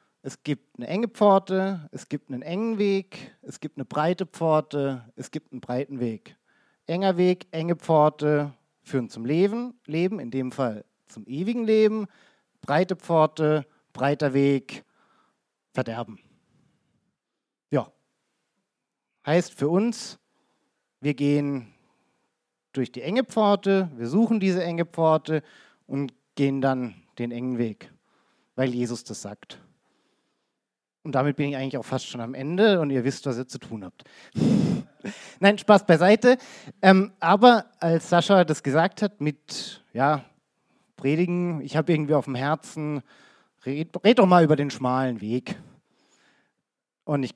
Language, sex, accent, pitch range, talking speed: German, male, German, 135-190 Hz, 140 wpm